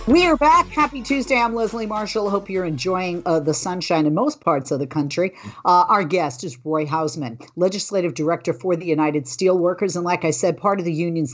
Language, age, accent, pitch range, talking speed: English, 40-59, American, 155-185 Hz, 210 wpm